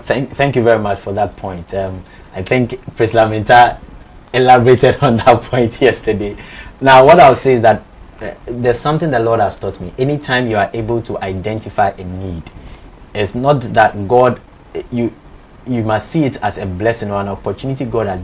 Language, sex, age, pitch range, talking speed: English, male, 30-49, 95-125 Hz, 185 wpm